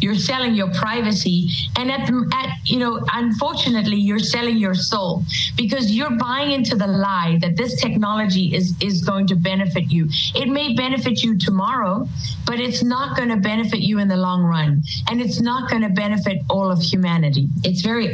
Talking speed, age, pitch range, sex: 185 wpm, 50-69, 170-225 Hz, female